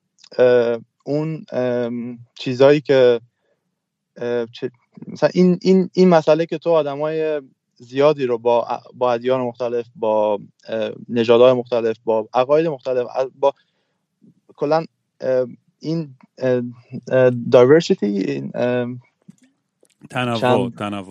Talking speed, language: 80 wpm, Persian